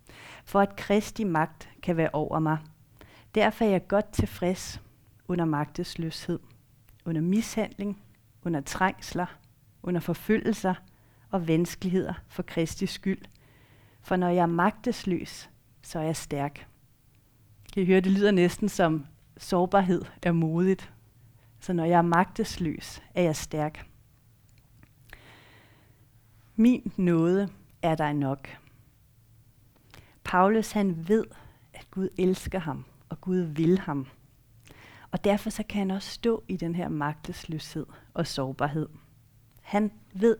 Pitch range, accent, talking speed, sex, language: 125-185 Hz, native, 125 wpm, female, Danish